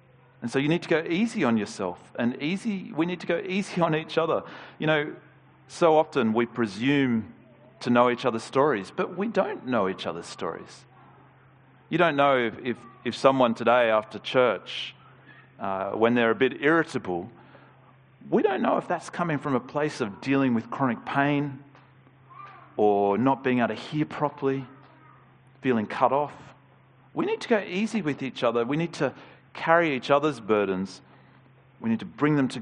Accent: Australian